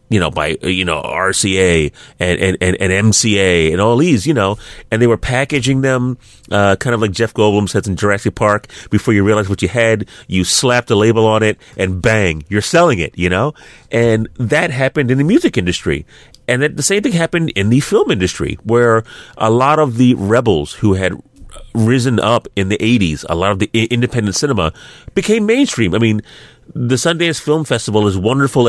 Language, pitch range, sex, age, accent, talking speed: English, 95-130 Hz, male, 30-49, American, 200 wpm